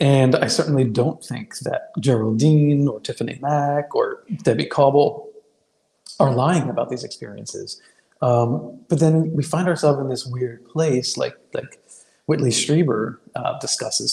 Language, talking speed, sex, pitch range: English, 145 wpm, male, 130-160 Hz